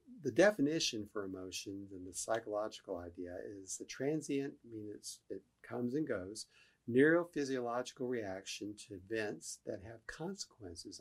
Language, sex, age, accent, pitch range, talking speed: English, male, 50-69, American, 100-125 Hz, 130 wpm